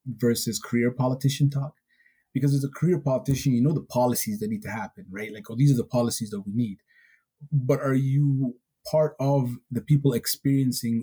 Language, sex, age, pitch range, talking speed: English, male, 30-49, 120-145 Hz, 190 wpm